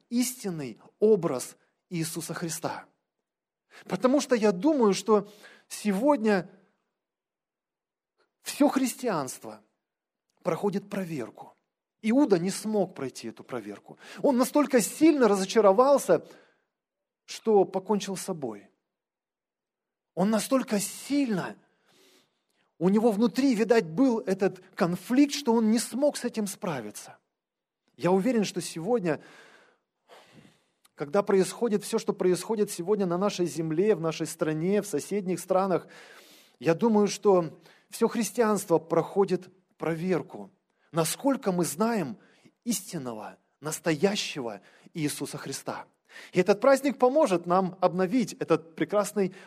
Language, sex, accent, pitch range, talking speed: Russian, male, native, 175-240 Hz, 105 wpm